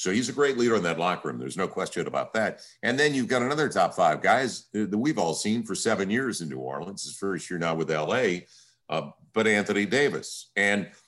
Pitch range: 85-115 Hz